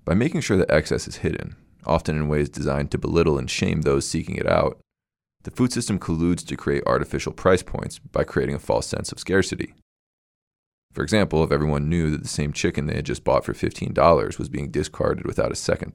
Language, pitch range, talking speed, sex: English, 75-90 Hz, 210 wpm, male